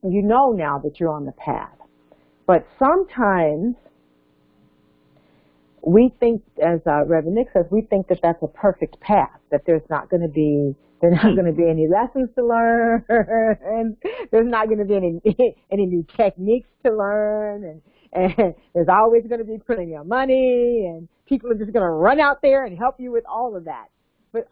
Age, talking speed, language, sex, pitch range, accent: 50-69, 190 wpm, English, female, 155-225 Hz, American